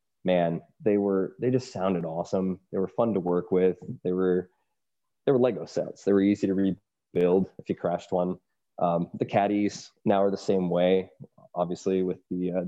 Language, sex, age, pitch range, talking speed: English, male, 20-39, 95-105 Hz, 180 wpm